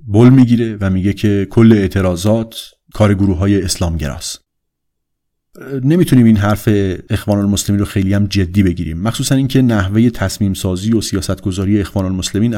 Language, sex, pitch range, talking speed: Persian, male, 95-120 Hz, 145 wpm